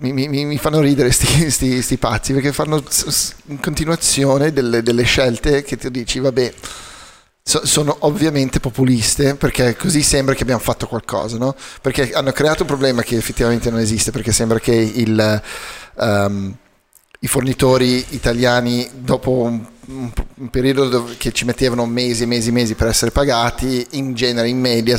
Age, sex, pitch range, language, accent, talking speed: 30-49, male, 115-135 Hz, Italian, native, 165 wpm